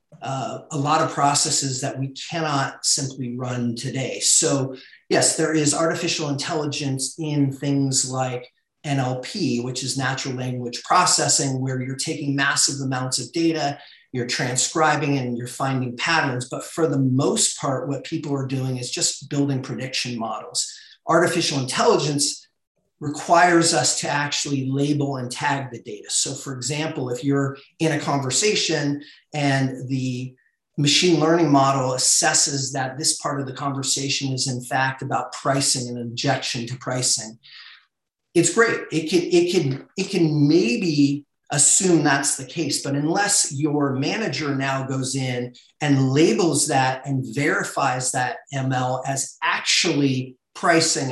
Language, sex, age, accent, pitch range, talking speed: English, male, 40-59, American, 130-155 Hz, 145 wpm